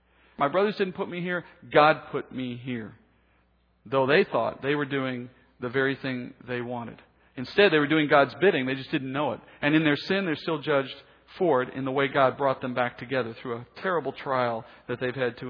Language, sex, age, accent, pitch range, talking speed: English, male, 50-69, American, 130-180 Hz, 220 wpm